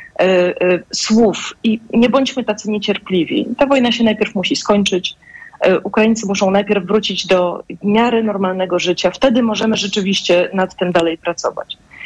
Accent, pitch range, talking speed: native, 180-220 Hz, 135 wpm